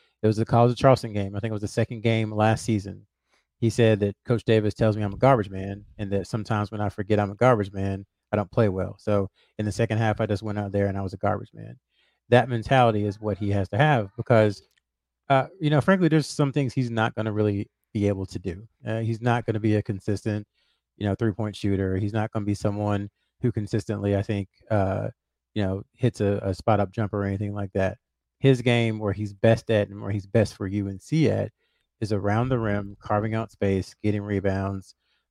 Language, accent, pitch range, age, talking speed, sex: English, American, 100-115 Hz, 30-49, 235 wpm, male